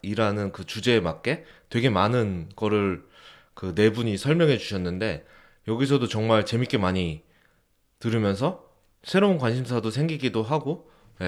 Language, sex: Korean, male